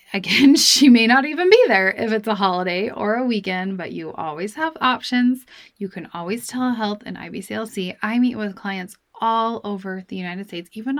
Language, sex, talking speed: English, female, 190 wpm